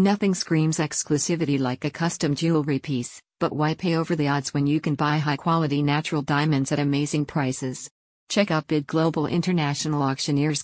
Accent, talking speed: American, 170 wpm